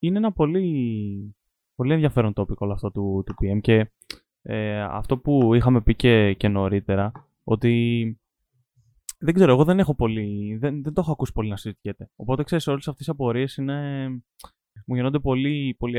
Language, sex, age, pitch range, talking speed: Greek, male, 20-39, 115-150 Hz, 170 wpm